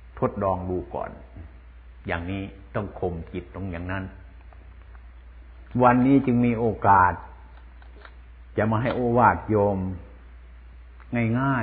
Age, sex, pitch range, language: 60-79, male, 65-105 Hz, Thai